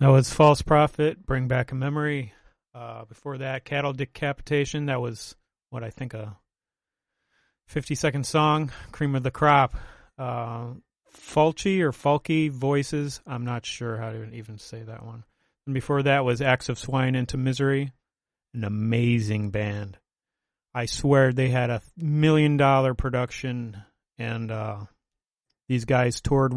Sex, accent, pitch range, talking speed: male, American, 115-140 Hz, 140 wpm